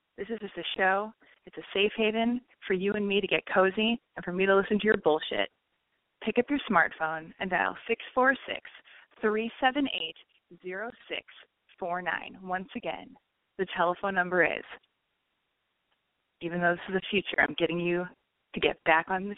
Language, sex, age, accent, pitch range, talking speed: English, female, 20-39, American, 190-240 Hz, 160 wpm